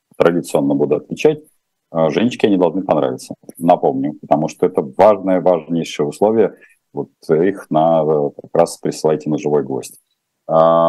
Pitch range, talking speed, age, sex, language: 80-105 Hz, 130 wpm, 40-59, male, Russian